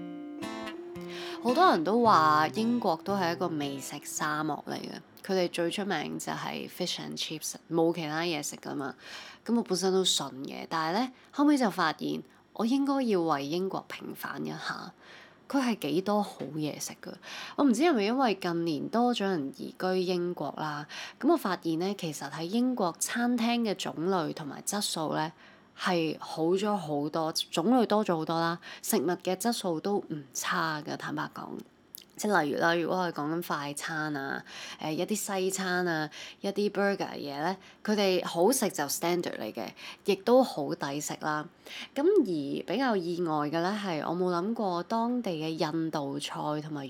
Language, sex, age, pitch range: Chinese, female, 20-39, 155-215 Hz